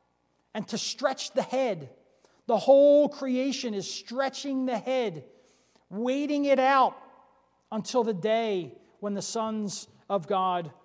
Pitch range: 210-290 Hz